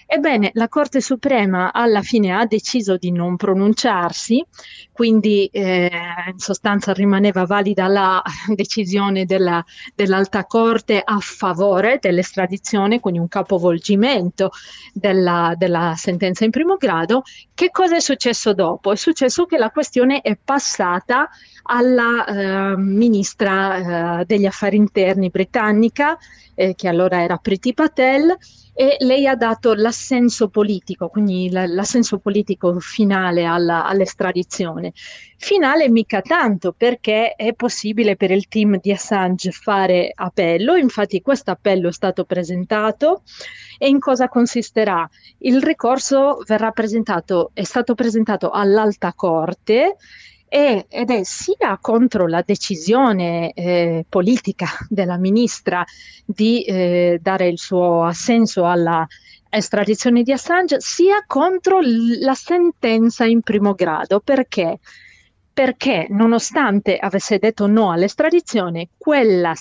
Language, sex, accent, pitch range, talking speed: Italian, female, native, 185-240 Hz, 120 wpm